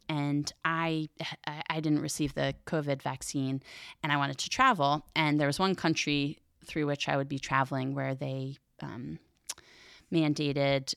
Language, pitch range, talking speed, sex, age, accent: English, 140-165 Hz, 155 wpm, female, 20-39, American